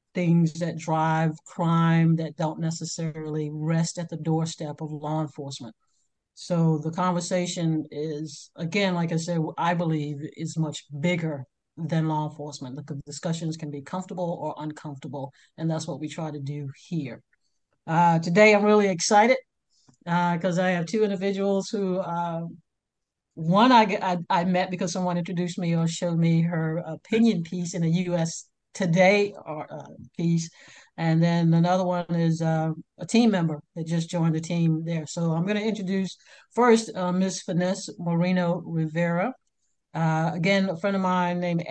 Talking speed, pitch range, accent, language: 160 wpm, 160-185 Hz, American, English